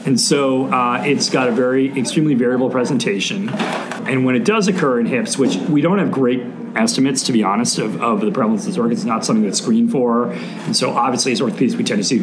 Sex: male